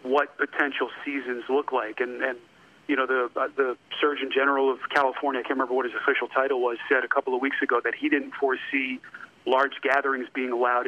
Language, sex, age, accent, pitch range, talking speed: English, male, 40-59, American, 130-155 Hz, 210 wpm